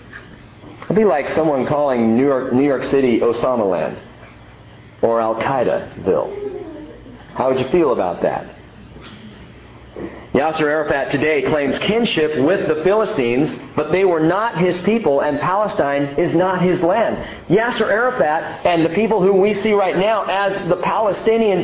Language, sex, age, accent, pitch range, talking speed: English, male, 40-59, American, 155-215 Hz, 145 wpm